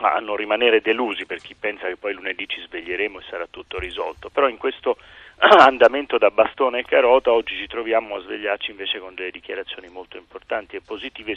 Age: 40-59